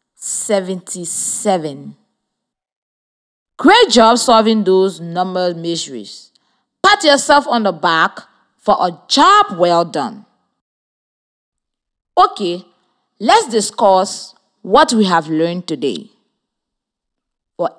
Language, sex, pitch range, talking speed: English, female, 180-255 Hz, 90 wpm